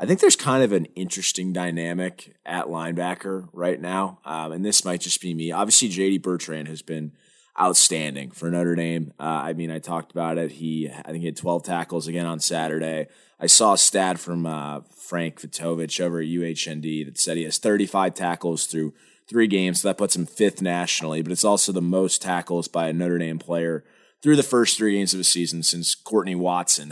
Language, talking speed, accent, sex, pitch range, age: English, 205 wpm, American, male, 85-100 Hz, 20-39